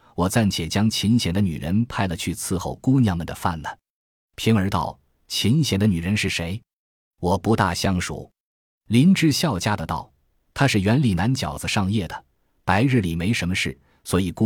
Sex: male